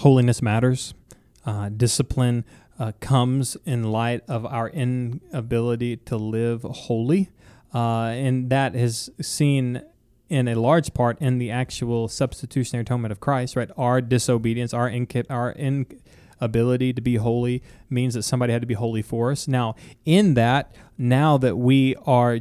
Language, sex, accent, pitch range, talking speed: English, male, American, 120-140 Hz, 155 wpm